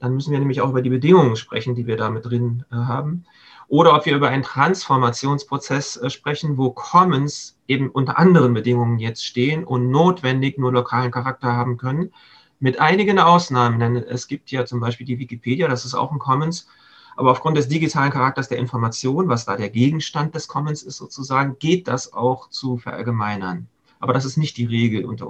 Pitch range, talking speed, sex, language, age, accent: 125-150 Hz, 195 wpm, male, German, 30-49, German